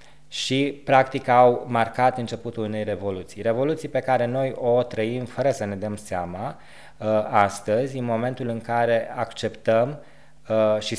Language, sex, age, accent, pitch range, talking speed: Romanian, male, 20-39, native, 110-130 Hz, 135 wpm